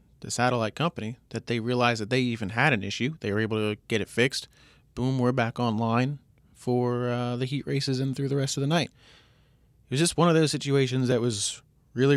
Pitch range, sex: 120-145 Hz, male